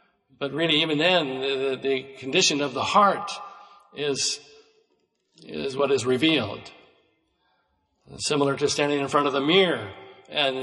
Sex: male